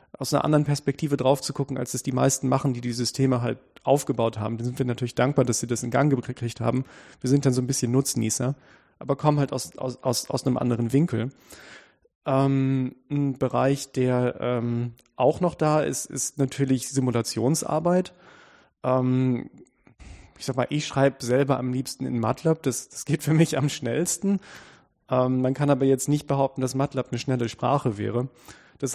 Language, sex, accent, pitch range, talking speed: German, male, German, 120-140 Hz, 185 wpm